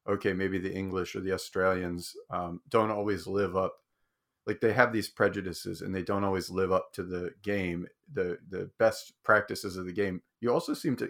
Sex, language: male, English